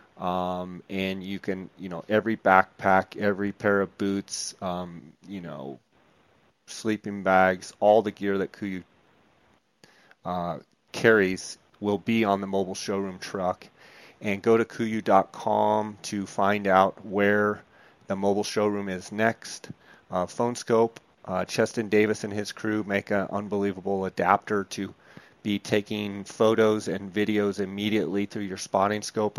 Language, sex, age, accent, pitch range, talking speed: English, male, 30-49, American, 95-105 Hz, 135 wpm